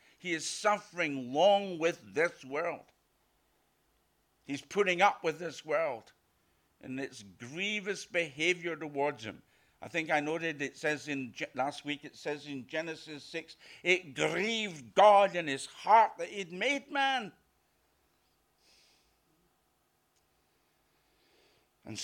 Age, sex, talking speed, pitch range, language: 60-79, male, 120 wpm, 120-165 Hz, English